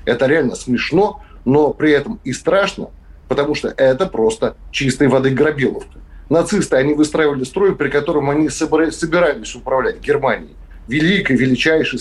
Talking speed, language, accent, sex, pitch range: 140 wpm, Russian, native, male, 125-170 Hz